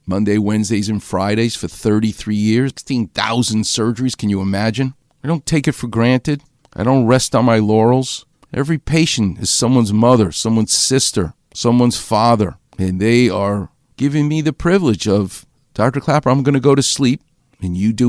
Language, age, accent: English, 50-69, American